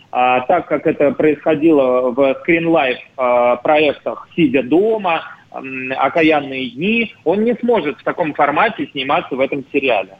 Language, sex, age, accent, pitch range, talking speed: Russian, male, 30-49, native, 140-185 Hz, 130 wpm